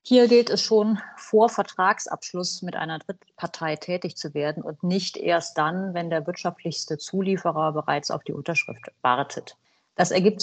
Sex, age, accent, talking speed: female, 30-49, German, 155 wpm